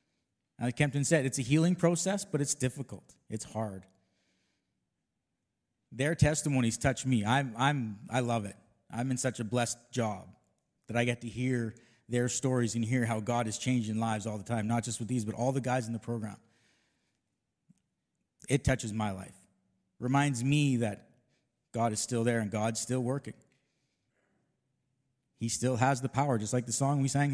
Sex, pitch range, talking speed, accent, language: male, 115-145 Hz, 180 wpm, American, English